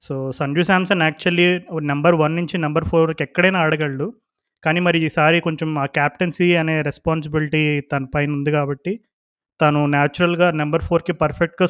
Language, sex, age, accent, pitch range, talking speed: Telugu, male, 20-39, native, 145-165 Hz, 150 wpm